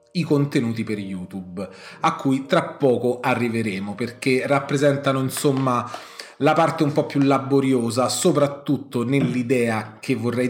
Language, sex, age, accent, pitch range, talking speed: Italian, male, 30-49, native, 115-140 Hz, 125 wpm